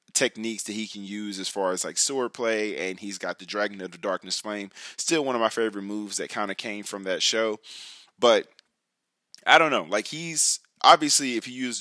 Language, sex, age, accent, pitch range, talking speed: English, male, 20-39, American, 100-115 Hz, 220 wpm